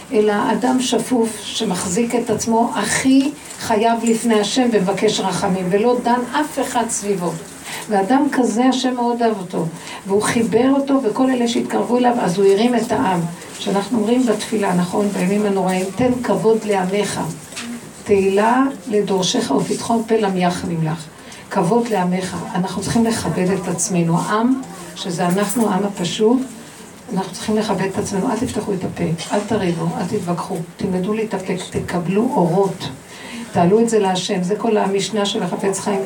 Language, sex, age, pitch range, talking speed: Hebrew, female, 60-79, 195-240 Hz, 150 wpm